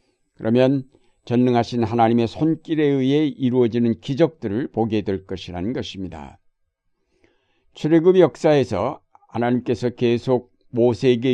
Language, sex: Korean, male